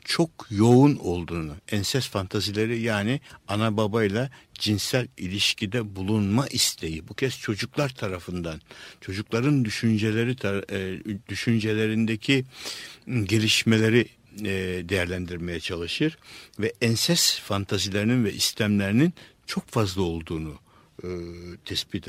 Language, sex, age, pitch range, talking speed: Turkish, male, 60-79, 100-130 Hz, 85 wpm